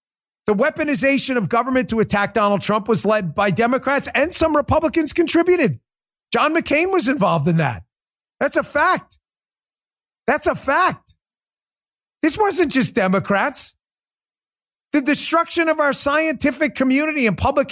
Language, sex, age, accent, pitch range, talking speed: English, male, 40-59, American, 200-290 Hz, 135 wpm